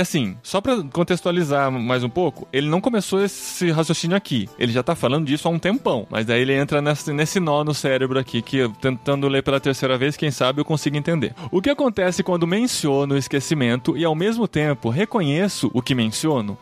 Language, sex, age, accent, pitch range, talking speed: Portuguese, male, 20-39, Brazilian, 140-200 Hz, 200 wpm